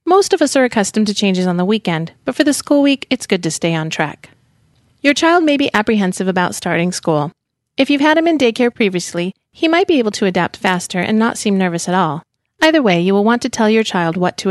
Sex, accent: female, American